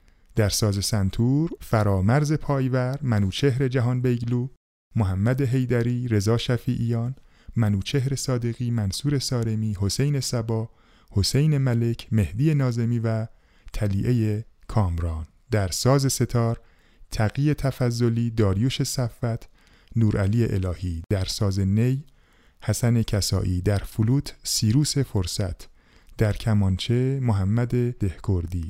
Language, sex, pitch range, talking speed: Persian, male, 105-130 Hz, 100 wpm